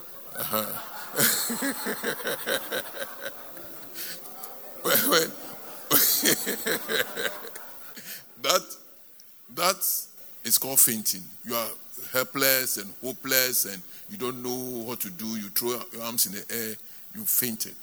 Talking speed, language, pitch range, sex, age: 110 wpm, English, 120-165 Hz, male, 60-79